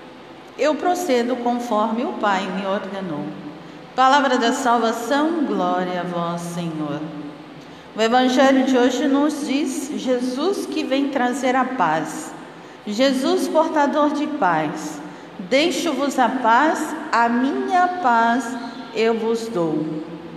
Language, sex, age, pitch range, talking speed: Portuguese, female, 50-69, 215-275 Hz, 115 wpm